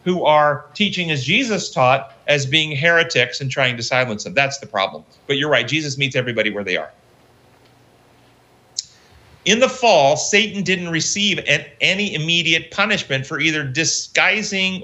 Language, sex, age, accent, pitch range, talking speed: English, male, 40-59, American, 140-185 Hz, 155 wpm